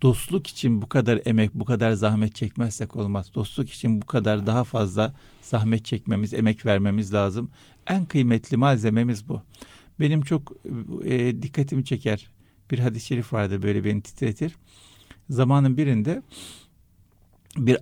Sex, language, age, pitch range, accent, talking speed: male, Turkish, 60-79, 105-140 Hz, native, 135 wpm